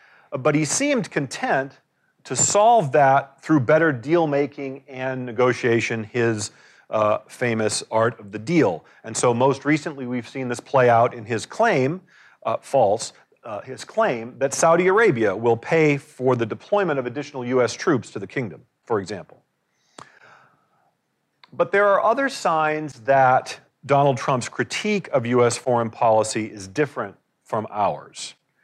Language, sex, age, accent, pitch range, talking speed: English, male, 40-59, American, 125-165 Hz, 145 wpm